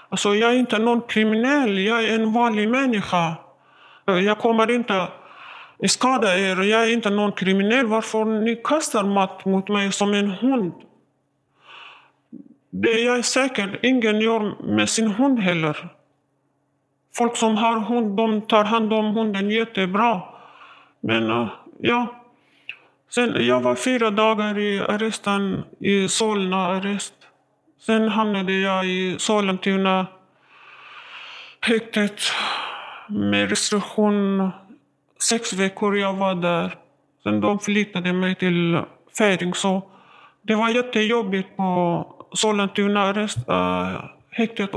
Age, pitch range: 50-69, 185-225 Hz